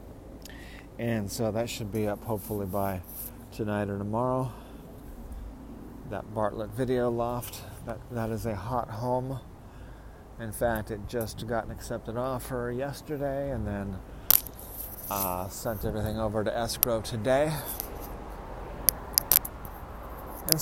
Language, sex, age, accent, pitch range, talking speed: English, male, 40-59, American, 105-125 Hz, 115 wpm